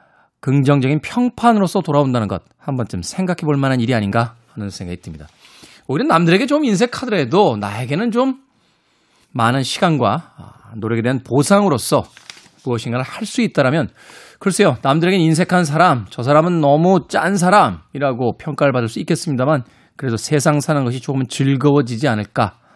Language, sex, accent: Korean, male, native